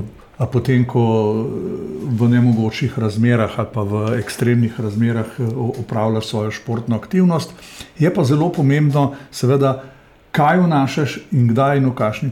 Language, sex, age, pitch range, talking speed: English, male, 50-69, 120-145 Hz, 130 wpm